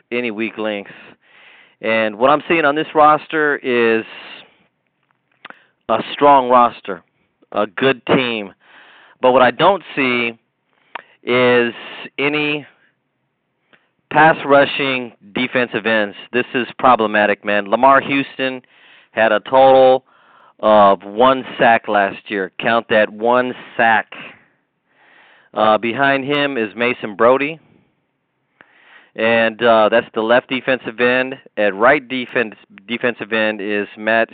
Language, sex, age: English, male, 40-59